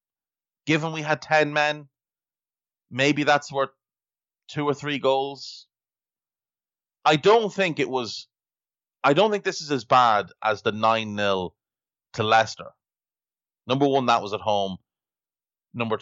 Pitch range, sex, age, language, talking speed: 100-135 Hz, male, 30-49, English, 135 wpm